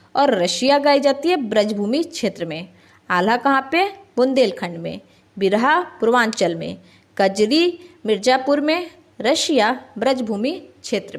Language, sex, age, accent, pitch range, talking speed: Hindi, female, 20-39, native, 210-295 Hz, 120 wpm